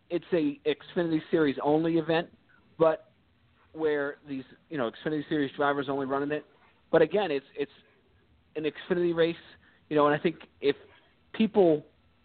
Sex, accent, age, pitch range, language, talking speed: male, American, 40-59, 145-190 Hz, English, 160 wpm